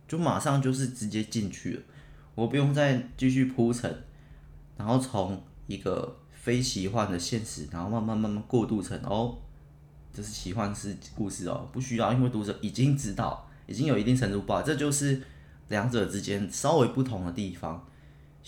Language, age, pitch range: Chinese, 20-39, 95-130 Hz